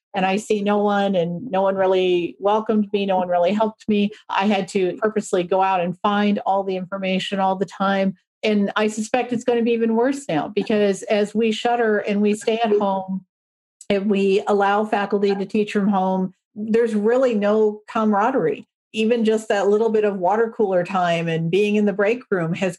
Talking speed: 205 wpm